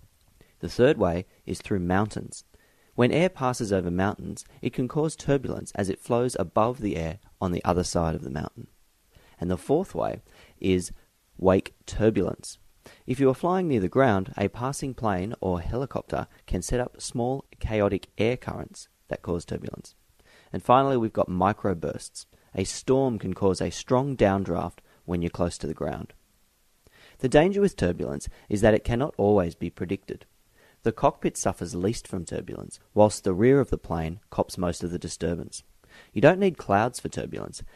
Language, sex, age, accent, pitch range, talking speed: English, male, 30-49, Australian, 90-125 Hz, 175 wpm